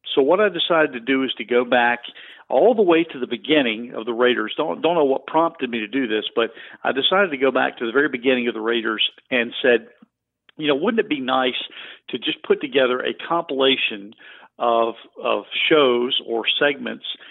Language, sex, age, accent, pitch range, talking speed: English, male, 50-69, American, 120-155 Hz, 210 wpm